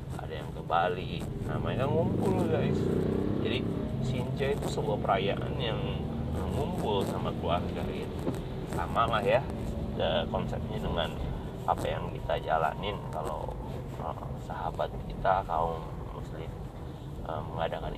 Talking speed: 115 wpm